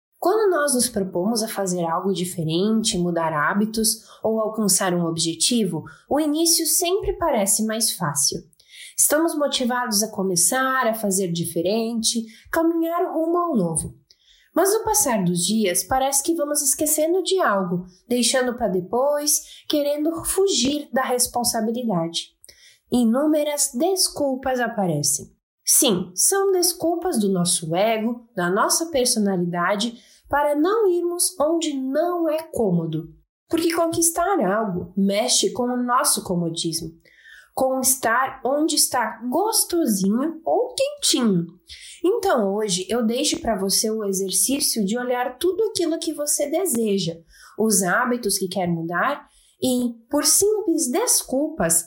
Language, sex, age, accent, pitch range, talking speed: Portuguese, female, 20-39, Brazilian, 195-310 Hz, 125 wpm